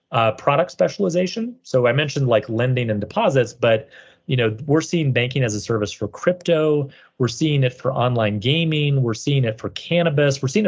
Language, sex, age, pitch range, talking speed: English, male, 30-49, 110-140 Hz, 190 wpm